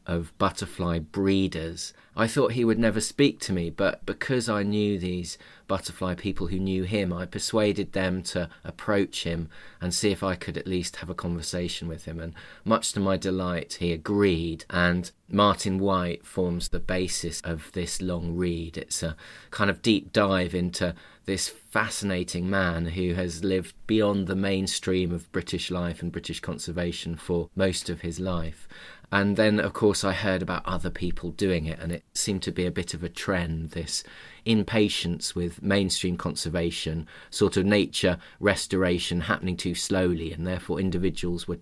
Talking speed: 175 wpm